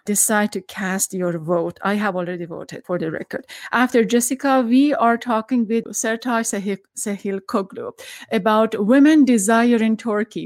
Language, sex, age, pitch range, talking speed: English, female, 30-49, 200-240 Hz, 150 wpm